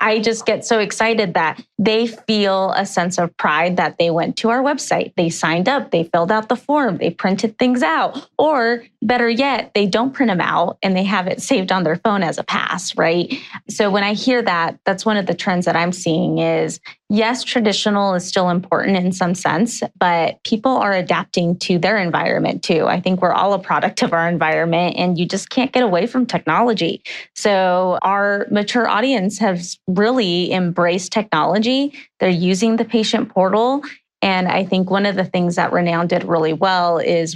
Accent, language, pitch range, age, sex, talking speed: American, English, 175-220 Hz, 20-39, female, 200 wpm